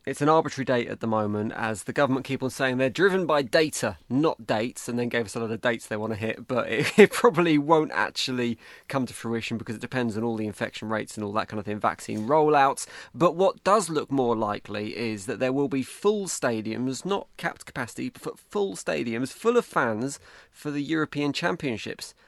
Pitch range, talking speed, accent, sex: 115-155 Hz, 220 wpm, British, male